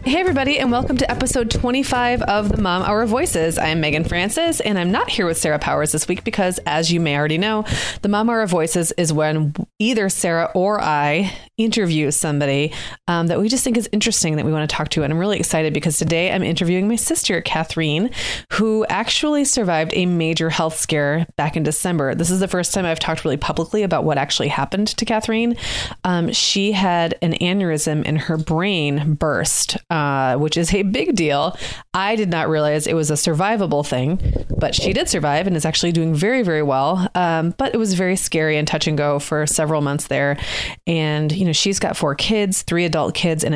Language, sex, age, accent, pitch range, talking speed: English, female, 30-49, American, 150-195 Hz, 210 wpm